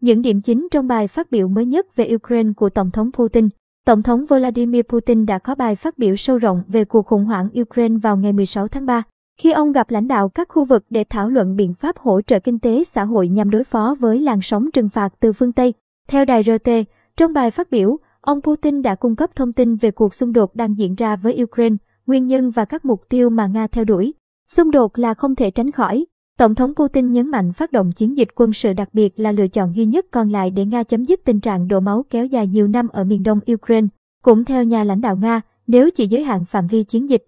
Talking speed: 250 wpm